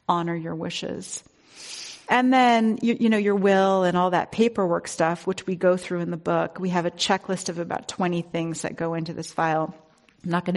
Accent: American